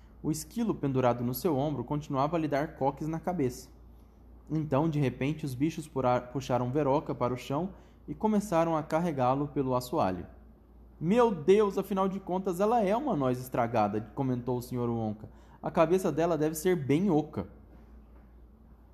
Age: 20-39